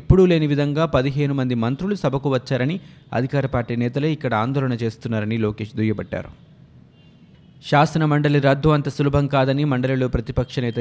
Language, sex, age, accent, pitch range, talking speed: Telugu, male, 20-39, native, 125-145 Hz, 140 wpm